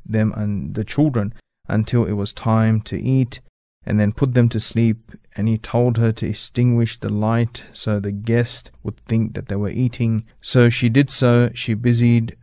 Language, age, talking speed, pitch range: English, 30-49, 190 wpm, 105-120 Hz